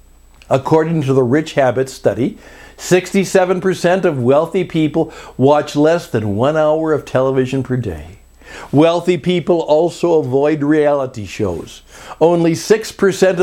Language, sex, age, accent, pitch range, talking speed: English, male, 60-79, American, 120-180 Hz, 120 wpm